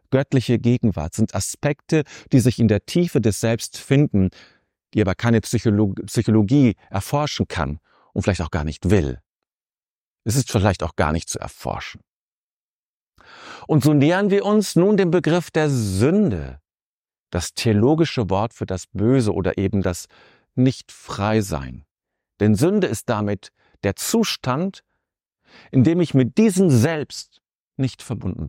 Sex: male